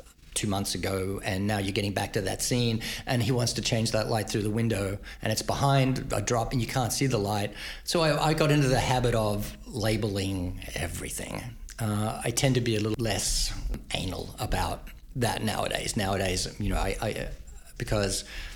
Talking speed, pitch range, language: 195 wpm, 100-130 Hz, English